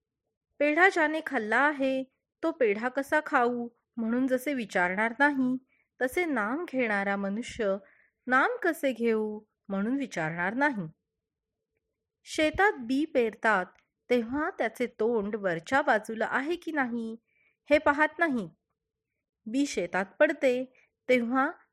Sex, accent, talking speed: female, native, 110 wpm